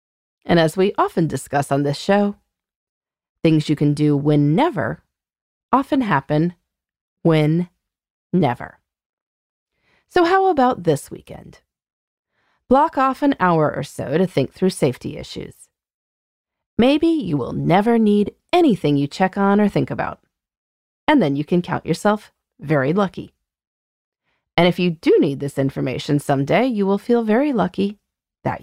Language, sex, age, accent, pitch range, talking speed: English, female, 30-49, American, 145-230 Hz, 140 wpm